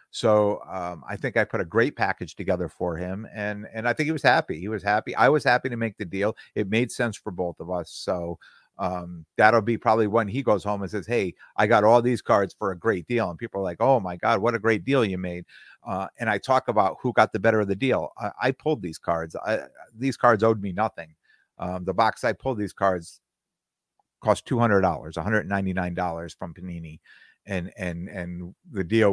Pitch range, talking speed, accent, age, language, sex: 90-115 Hz, 225 wpm, American, 50-69, English, male